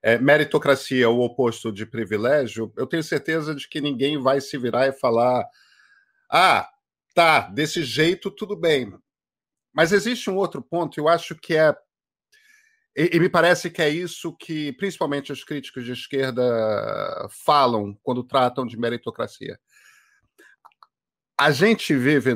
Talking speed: 140 wpm